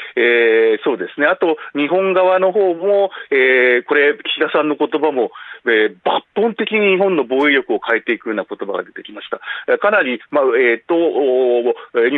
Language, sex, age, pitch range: Japanese, male, 40-59, 140-220 Hz